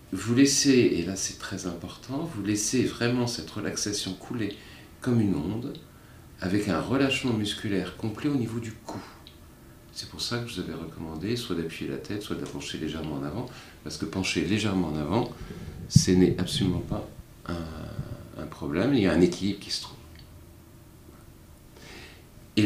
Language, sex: French, male